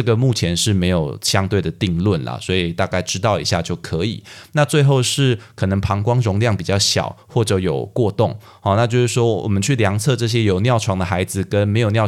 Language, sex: Chinese, male